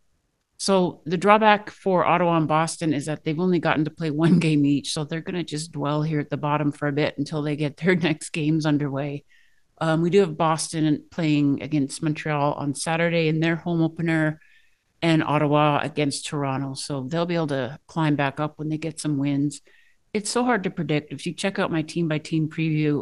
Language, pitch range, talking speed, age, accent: English, 145-170 Hz, 215 wpm, 50-69, American